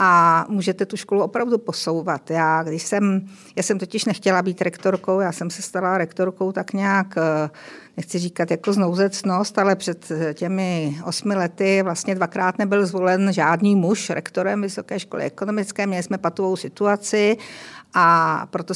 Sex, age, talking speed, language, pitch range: female, 50-69, 145 wpm, Czech, 180-205 Hz